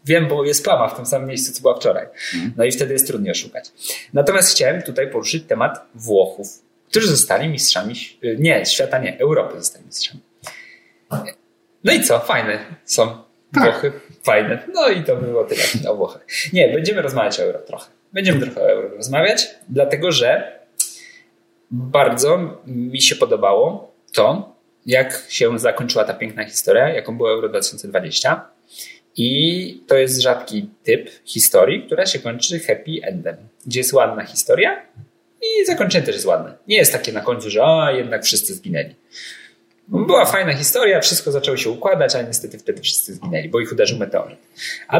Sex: male